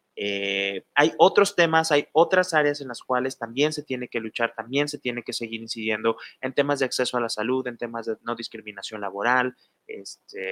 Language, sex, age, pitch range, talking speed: Spanish, male, 30-49, 120-165 Hz, 200 wpm